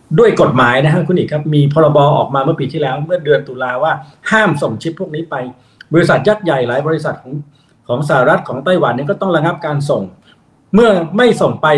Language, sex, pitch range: Thai, male, 140-170 Hz